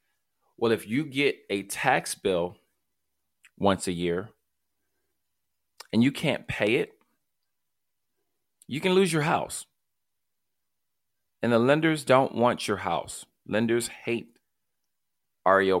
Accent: American